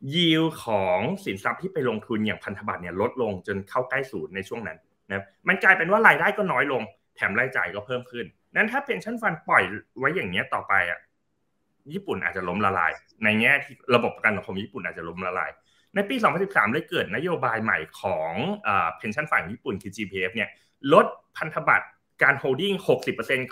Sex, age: male, 20-39